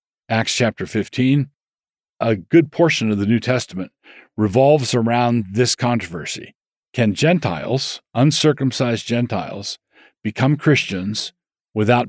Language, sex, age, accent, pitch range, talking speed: English, male, 50-69, American, 110-145 Hz, 105 wpm